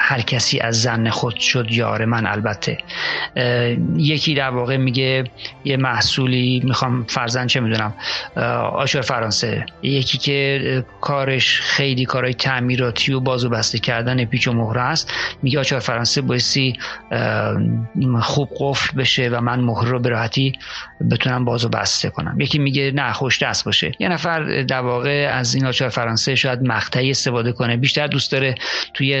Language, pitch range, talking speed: Persian, 115-135 Hz, 155 wpm